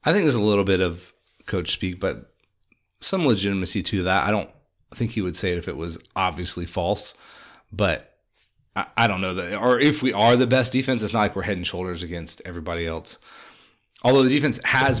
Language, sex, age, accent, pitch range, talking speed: English, male, 30-49, American, 90-120 Hz, 210 wpm